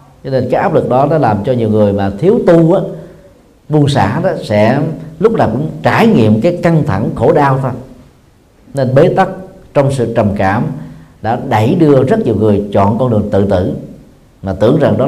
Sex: male